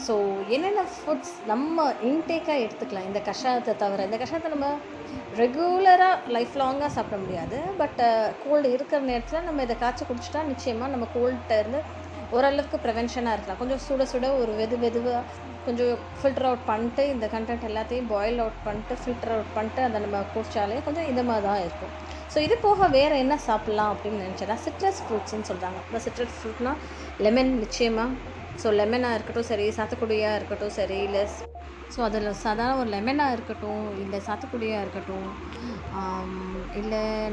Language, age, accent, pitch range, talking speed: Tamil, 20-39, native, 210-260 Hz, 140 wpm